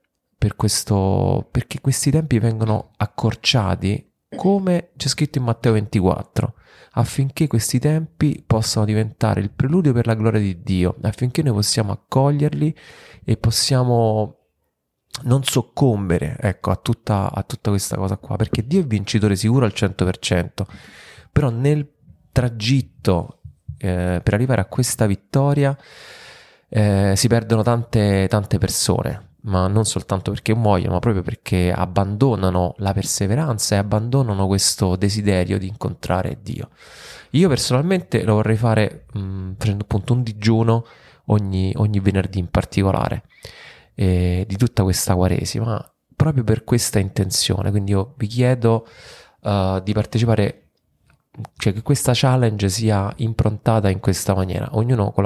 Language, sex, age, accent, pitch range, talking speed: Italian, male, 30-49, native, 100-125 Hz, 135 wpm